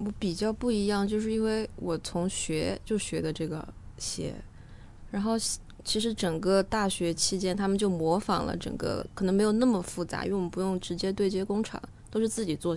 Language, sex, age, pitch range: Chinese, female, 20-39, 170-210 Hz